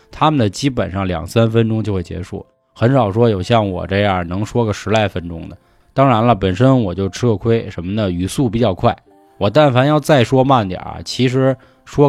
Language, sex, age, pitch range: Chinese, male, 20-39, 95-135 Hz